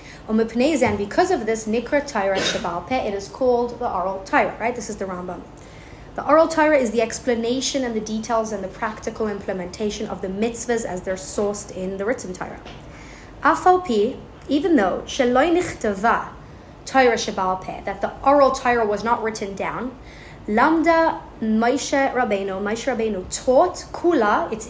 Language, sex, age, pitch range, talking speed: English, female, 20-39, 200-255 Hz, 120 wpm